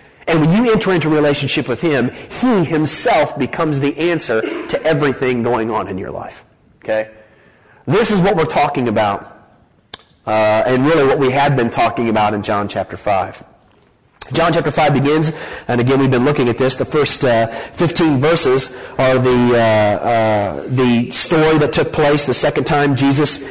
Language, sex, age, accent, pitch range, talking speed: English, male, 30-49, American, 125-160 Hz, 180 wpm